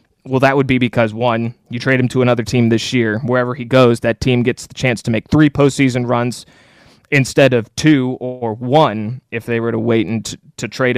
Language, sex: English, male